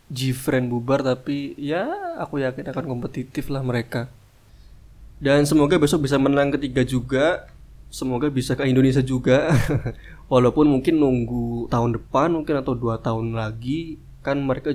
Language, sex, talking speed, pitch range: Indonesian, male, 140 wpm, 115-135 Hz